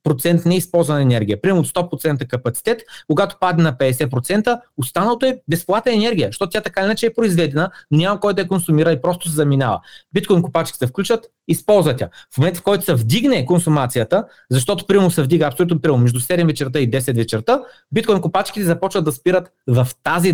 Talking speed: 180 wpm